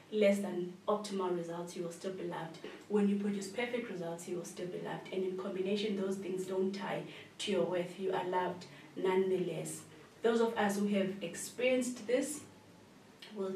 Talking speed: 180 wpm